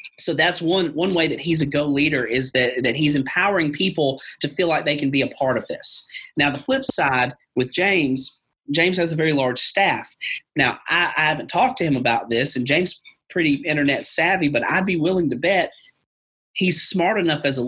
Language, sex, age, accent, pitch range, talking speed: English, male, 30-49, American, 130-170 Hz, 215 wpm